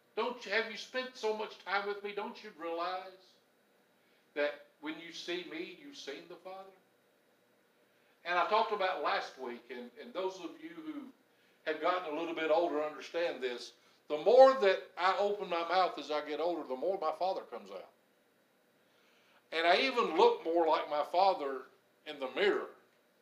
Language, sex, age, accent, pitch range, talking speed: English, male, 60-79, American, 160-240 Hz, 180 wpm